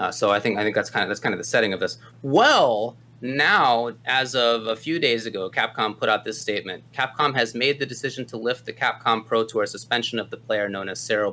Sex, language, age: male, English, 30-49